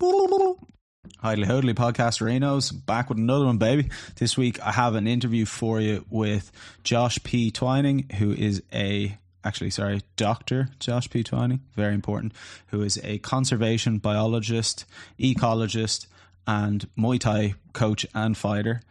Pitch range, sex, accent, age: 100-115 Hz, male, Irish, 20-39